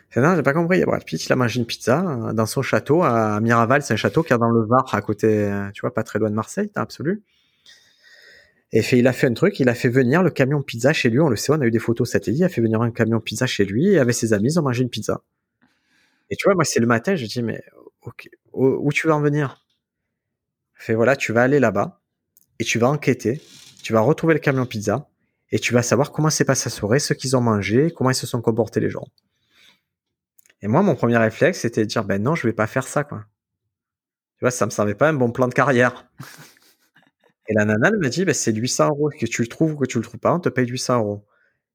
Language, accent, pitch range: French, French, 110-145 Hz